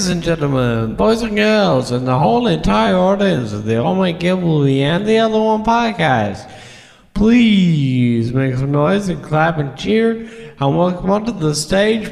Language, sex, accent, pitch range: English, male, American, 150-235 Hz